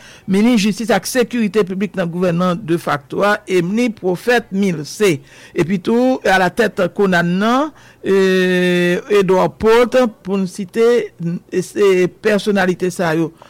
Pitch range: 185-225 Hz